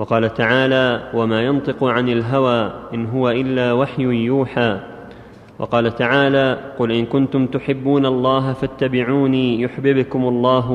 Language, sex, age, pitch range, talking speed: Arabic, male, 20-39, 120-135 Hz, 115 wpm